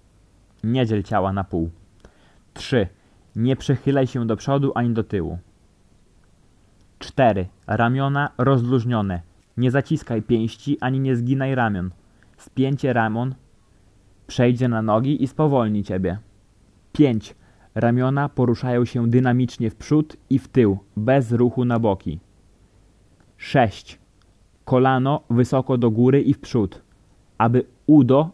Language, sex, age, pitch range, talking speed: Polish, male, 20-39, 100-130 Hz, 120 wpm